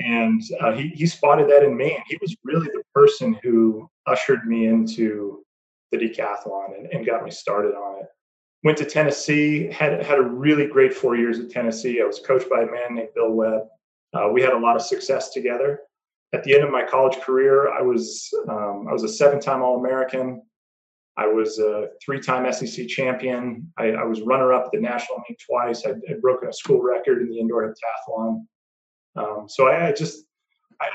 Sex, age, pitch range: male, 30-49, 115-180 Hz